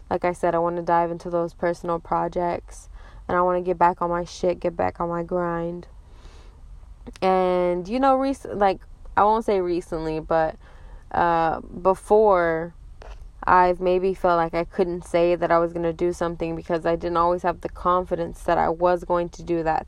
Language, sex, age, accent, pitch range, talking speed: English, female, 10-29, American, 165-185 Hz, 195 wpm